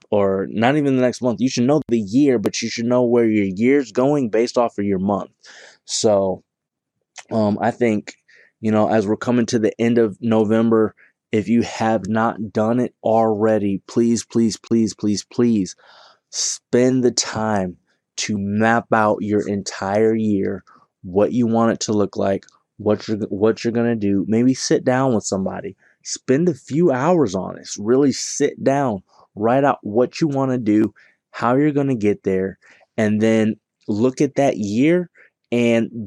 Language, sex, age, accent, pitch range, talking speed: English, male, 20-39, American, 110-125 Hz, 175 wpm